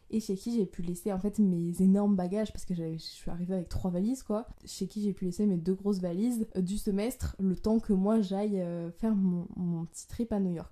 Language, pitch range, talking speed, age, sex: French, 180-205 Hz, 245 wpm, 20-39, female